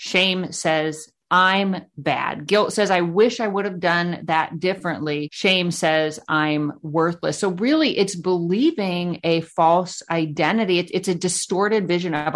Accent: American